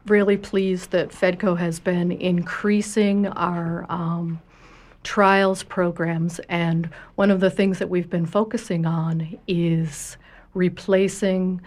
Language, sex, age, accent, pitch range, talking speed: English, female, 60-79, American, 170-195 Hz, 120 wpm